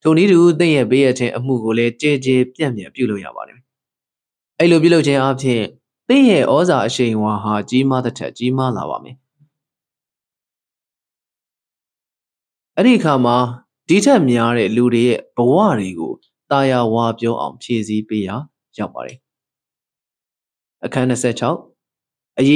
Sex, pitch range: male, 115-150 Hz